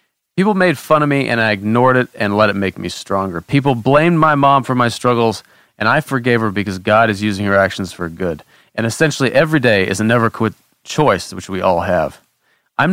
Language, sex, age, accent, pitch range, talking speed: English, male, 30-49, American, 105-135 Hz, 225 wpm